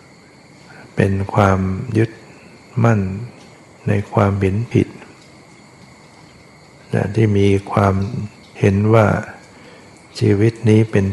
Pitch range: 100-110 Hz